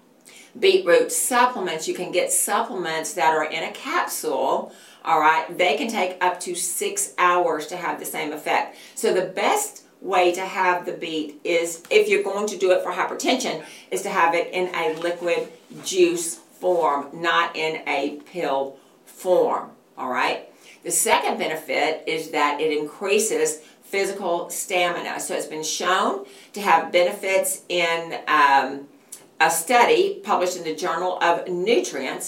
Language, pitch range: English, 160-200 Hz